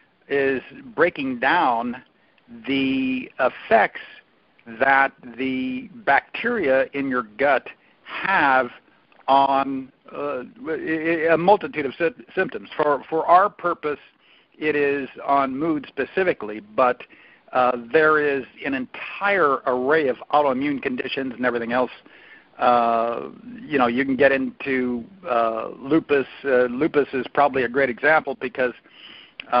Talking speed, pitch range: 115 wpm, 125-155 Hz